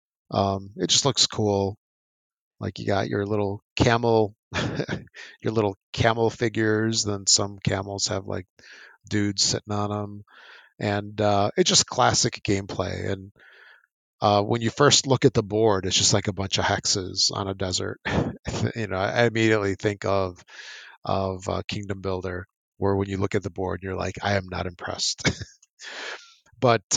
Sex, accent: male, American